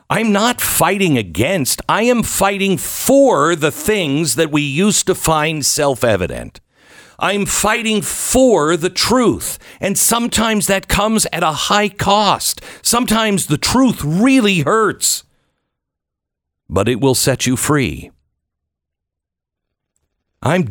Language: English